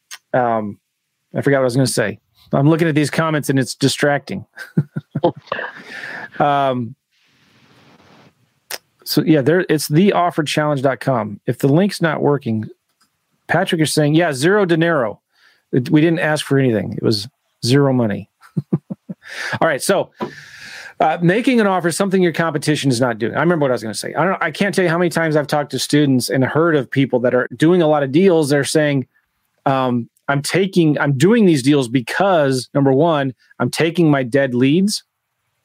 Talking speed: 180 wpm